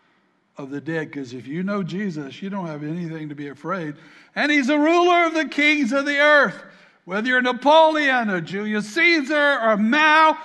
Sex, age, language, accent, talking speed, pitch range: male, 60-79, English, American, 190 wpm, 190-275 Hz